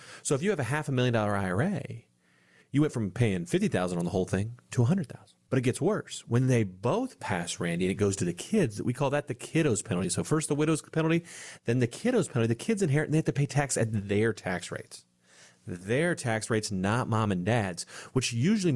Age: 40-59